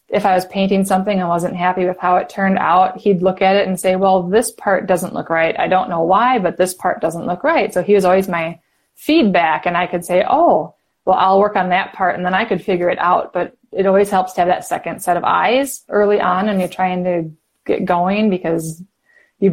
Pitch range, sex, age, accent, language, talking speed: 175-205 Hz, female, 20-39, American, English, 245 wpm